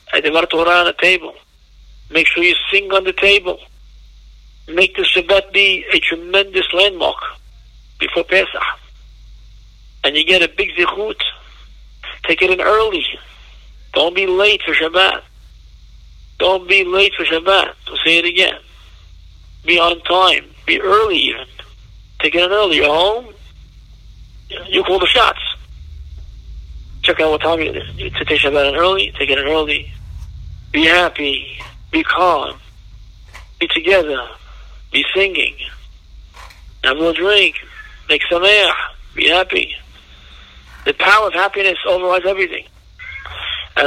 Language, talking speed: English, 135 wpm